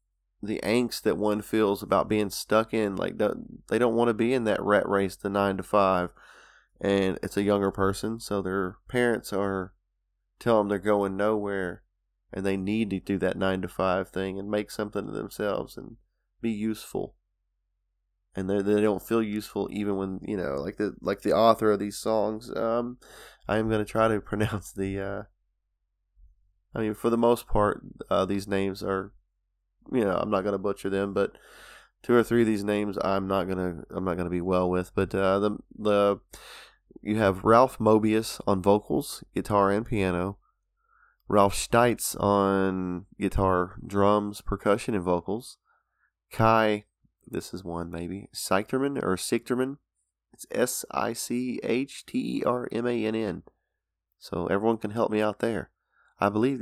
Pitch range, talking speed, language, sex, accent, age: 95-110 Hz, 175 wpm, English, male, American, 20-39